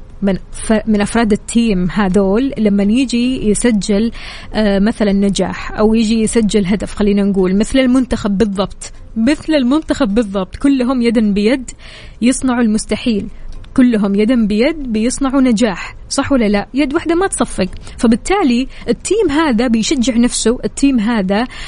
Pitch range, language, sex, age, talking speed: 210-265 Hz, Arabic, female, 20-39, 125 wpm